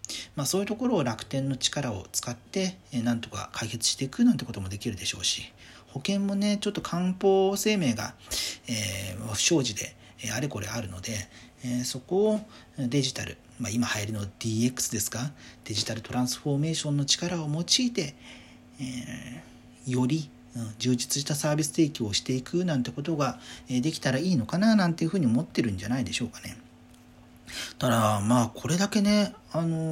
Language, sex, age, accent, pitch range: Japanese, male, 40-59, native, 115-165 Hz